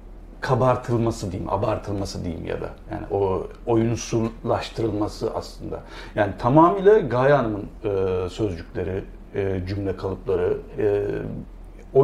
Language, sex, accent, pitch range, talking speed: Turkish, male, native, 105-155 Hz, 105 wpm